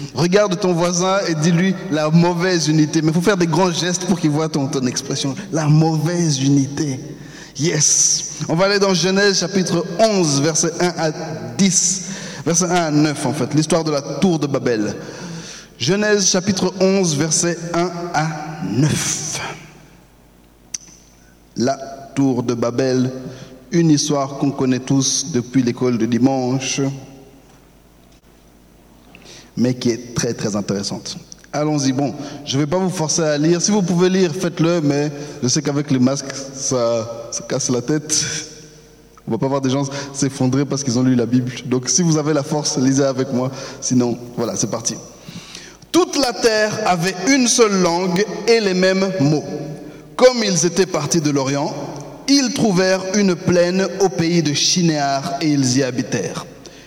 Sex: male